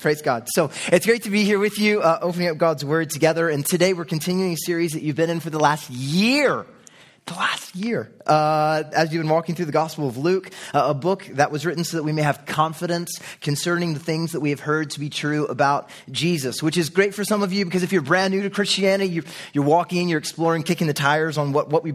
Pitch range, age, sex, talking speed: 145-175 Hz, 20-39, male, 250 wpm